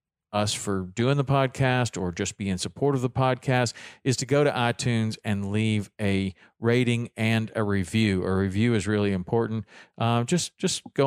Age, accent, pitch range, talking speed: 40-59, American, 95-115 Hz, 185 wpm